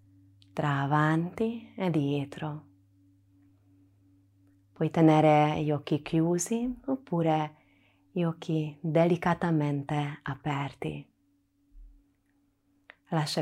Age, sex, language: 20-39, female, Italian